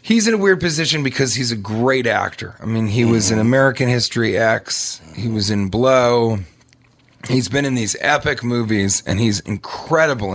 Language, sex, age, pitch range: English, male, 30-49, 105-135 Hz